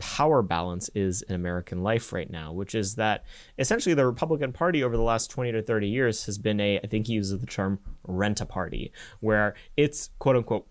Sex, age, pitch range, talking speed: male, 30-49, 95-115 Hz, 195 wpm